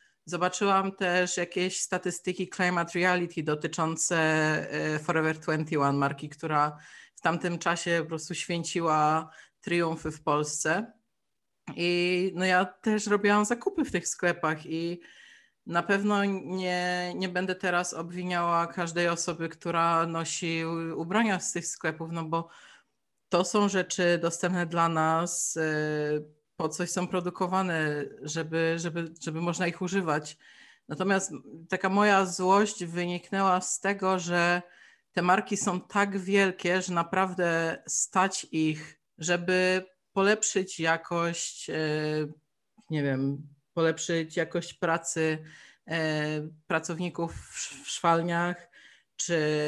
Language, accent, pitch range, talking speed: Polish, native, 160-185 Hz, 110 wpm